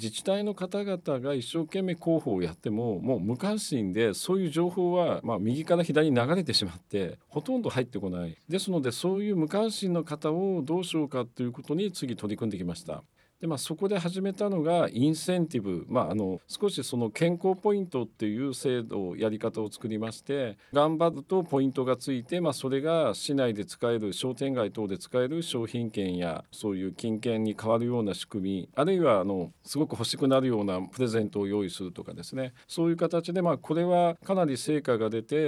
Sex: male